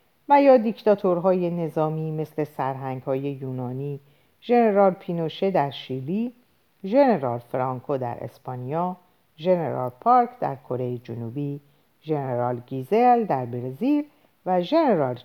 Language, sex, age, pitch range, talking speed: Persian, female, 50-69, 135-205 Hz, 100 wpm